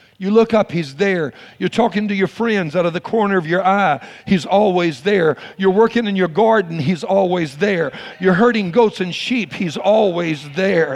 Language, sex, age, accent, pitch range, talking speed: English, male, 60-79, American, 180-230 Hz, 195 wpm